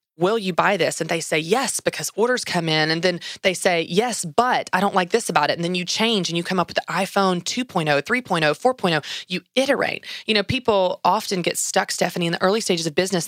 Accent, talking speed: American, 240 wpm